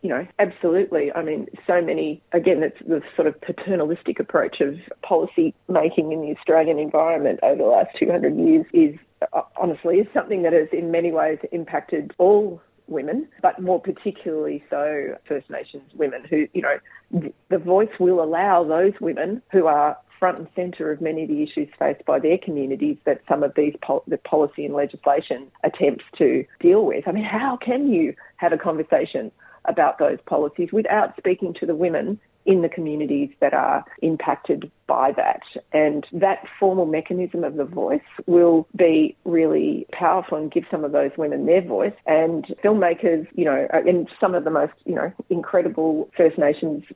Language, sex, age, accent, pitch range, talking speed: English, female, 30-49, Australian, 155-200 Hz, 180 wpm